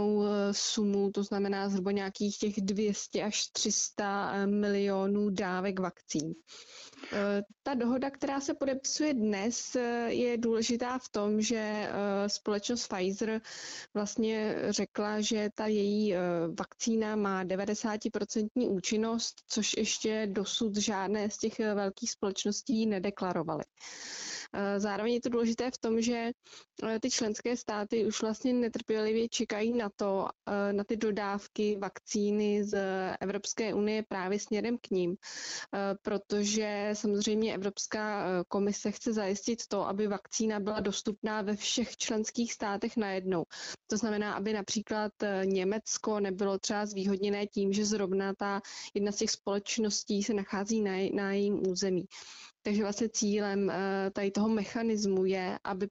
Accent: native